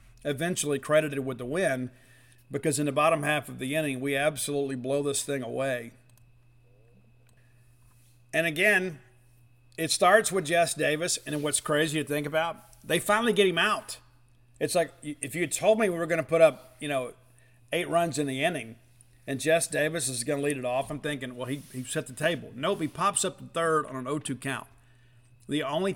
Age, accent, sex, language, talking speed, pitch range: 50-69, American, male, English, 200 wpm, 120-155 Hz